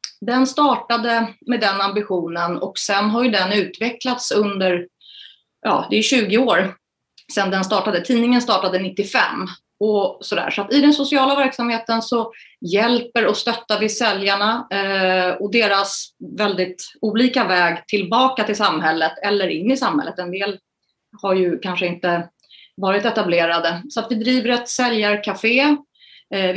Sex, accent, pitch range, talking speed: female, native, 190-235 Hz, 140 wpm